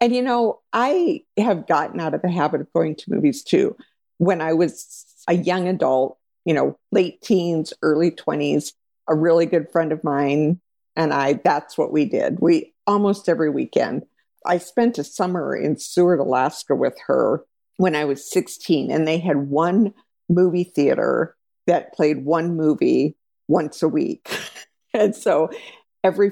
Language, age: English, 50-69